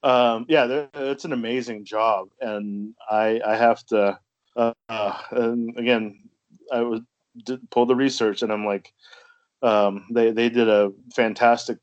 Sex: male